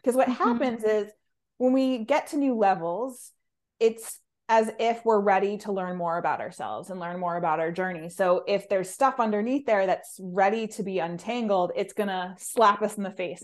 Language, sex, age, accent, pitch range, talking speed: English, female, 20-39, American, 190-235 Hz, 200 wpm